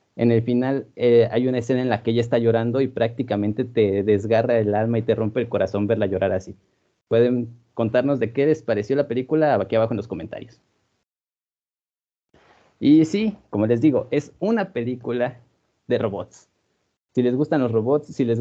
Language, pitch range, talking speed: Spanish, 115-140 Hz, 185 wpm